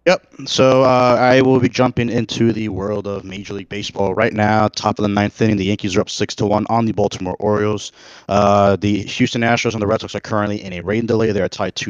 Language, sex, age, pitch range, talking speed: English, male, 20-39, 100-115 Hz, 245 wpm